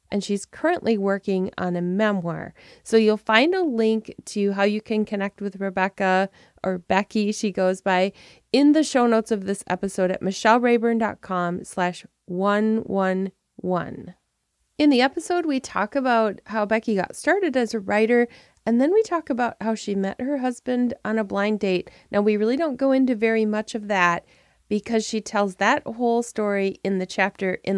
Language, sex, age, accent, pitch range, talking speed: English, female, 30-49, American, 190-235 Hz, 175 wpm